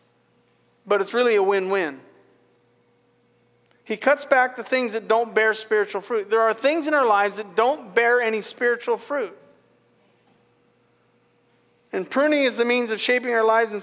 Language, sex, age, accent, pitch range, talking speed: English, male, 50-69, American, 190-230 Hz, 160 wpm